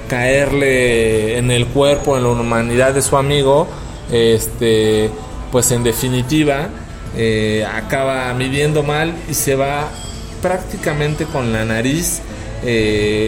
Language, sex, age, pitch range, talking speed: Spanish, male, 30-49, 115-150 Hz, 115 wpm